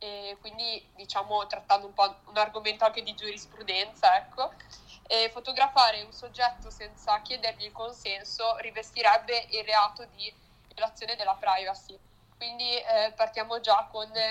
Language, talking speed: Italian, 135 wpm